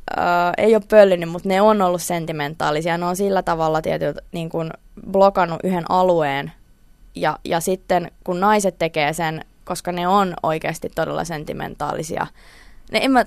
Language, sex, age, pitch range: Finnish, female, 20-39, 165-195 Hz